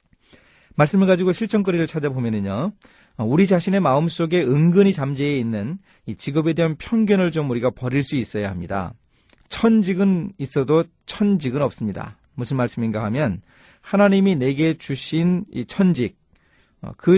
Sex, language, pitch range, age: male, Korean, 115-170 Hz, 40-59